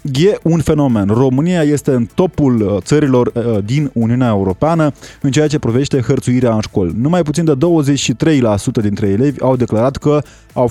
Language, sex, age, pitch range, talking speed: Romanian, male, 20-39, 115-150 Hz, 155 wpm